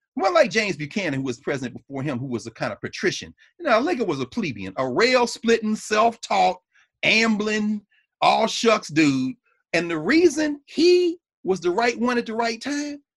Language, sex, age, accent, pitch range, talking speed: English, male, 40-59, American, 155-260 Hz, 195 wpm